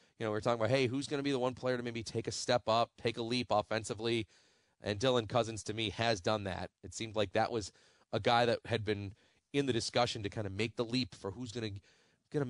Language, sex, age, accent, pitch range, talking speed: English, male, 30-49, American, 105-130 Hz, 260 wpm